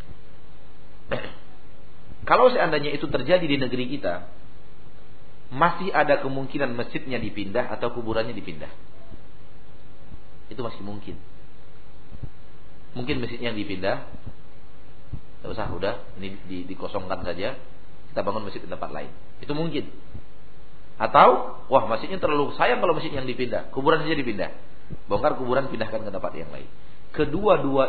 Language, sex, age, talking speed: Malay, male, 40-59, 120 wpm